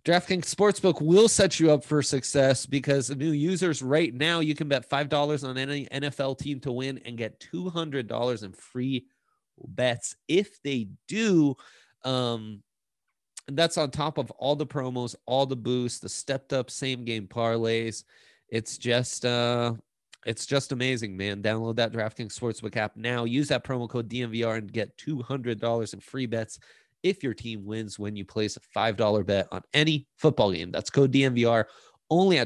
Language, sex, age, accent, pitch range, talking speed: English, male, 30-49, American, 110-145 Hz, 180 wpm